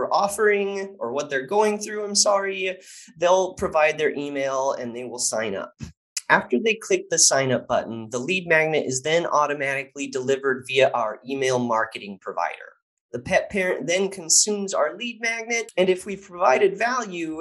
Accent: American